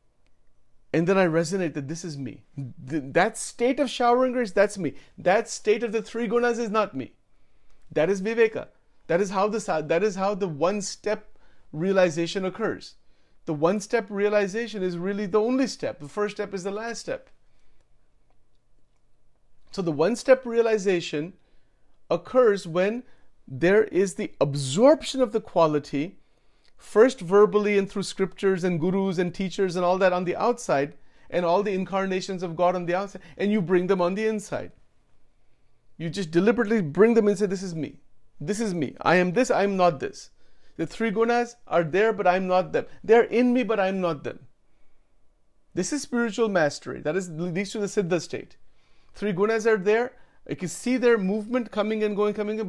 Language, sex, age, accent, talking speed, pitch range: English, male, 40-59, Indian, 185 wpm, 175-220 Hz